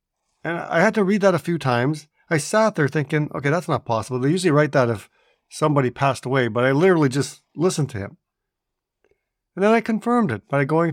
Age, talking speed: 50-69, 215 wpm